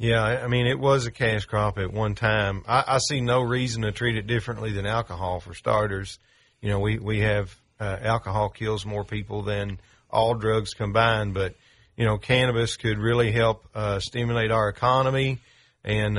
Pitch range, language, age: 100-120 Hz, English, 40-59